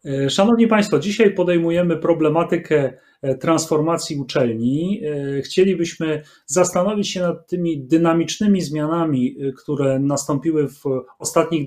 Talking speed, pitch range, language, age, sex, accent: 95 wpm, 150-180 Hz, Polish, 30-49, male, native